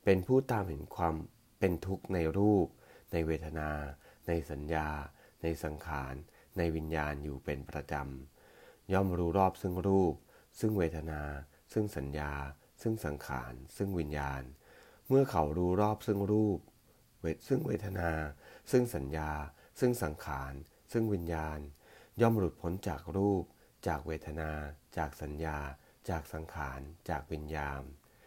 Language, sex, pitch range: English, male, 75-95 Hz